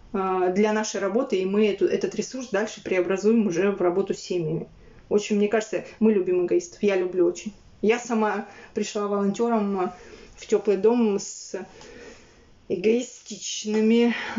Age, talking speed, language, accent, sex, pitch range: 20-39, 140 wpm, Russian, native, female, 205-230 Hz